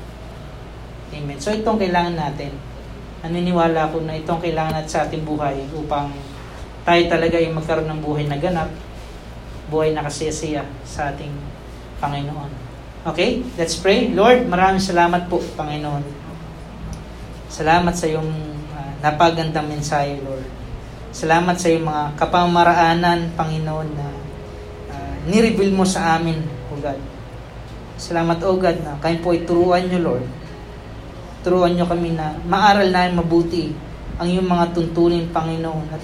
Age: 20-39